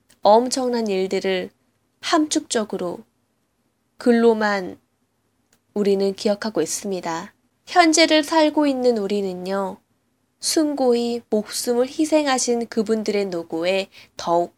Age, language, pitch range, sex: 10-29, Korean, 185-245 Hz, female